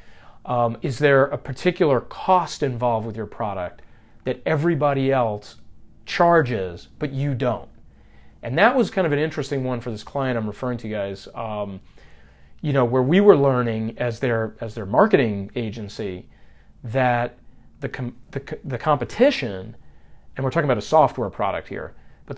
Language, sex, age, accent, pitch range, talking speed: English, male, 40-59, American, 110-140 Hz, 160 wpm